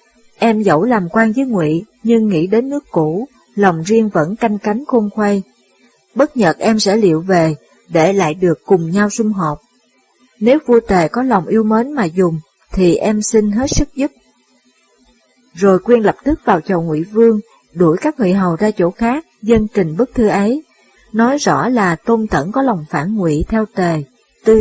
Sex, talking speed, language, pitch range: female, 190 wpm, Vietnamese, 175-235 Hz